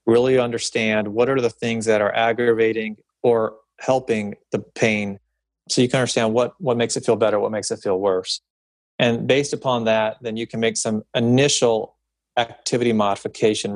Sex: male